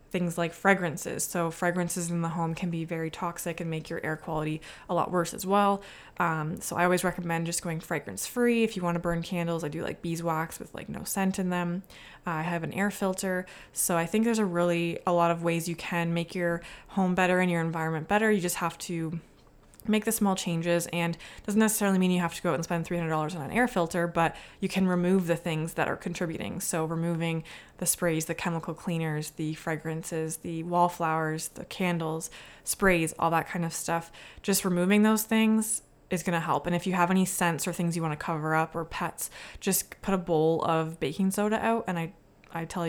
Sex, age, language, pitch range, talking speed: female, 20-39, English, 165-185 Hz, 225 wpm